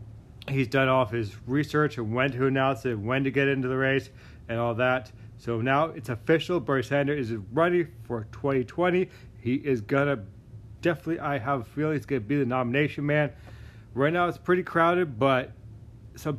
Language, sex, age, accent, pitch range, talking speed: English, male, 30-49, American, 115-160 Hz, 185 wpm